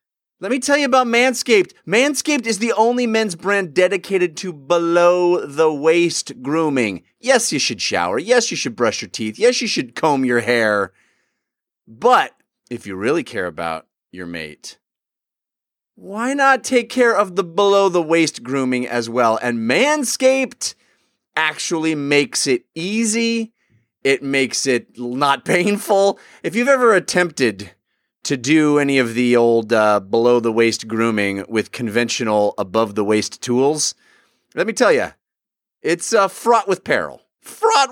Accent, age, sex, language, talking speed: American, 30-49, male, English, 140 wpm